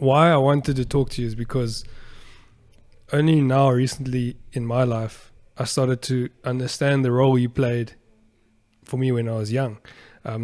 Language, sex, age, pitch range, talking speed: English, male, 20-39, 115-135 Hz, 170 wpm